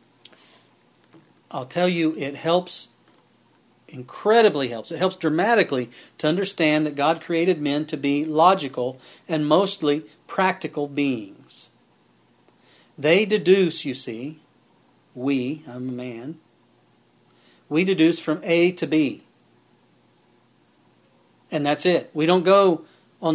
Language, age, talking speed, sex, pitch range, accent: English, 40-59, 115 wpm, male, 140-180 Hz, American